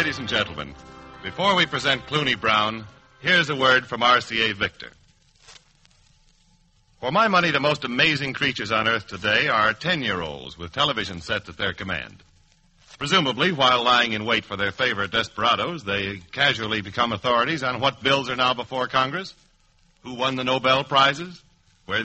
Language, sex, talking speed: English, male, 160 wpm